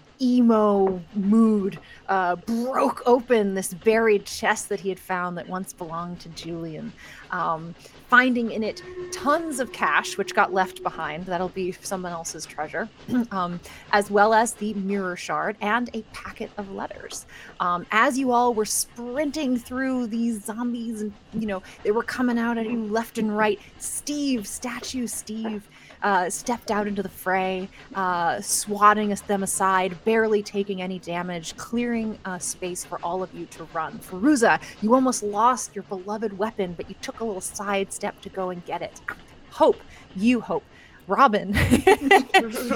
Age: 20-39